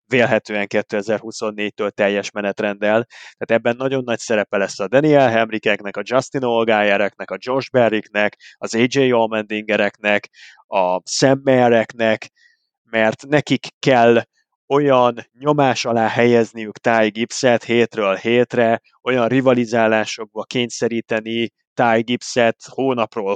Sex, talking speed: male, 100 wpm